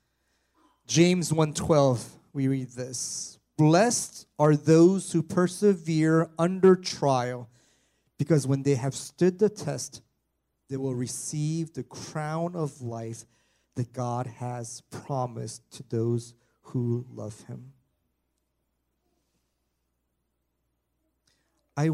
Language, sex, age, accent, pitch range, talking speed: English, male, 30-49, American, 110-145 Hz, 100 wpm